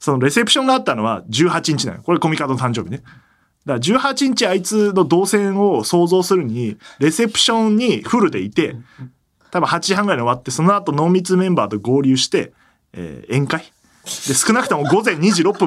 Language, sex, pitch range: Japanese, male, 130-210 Hz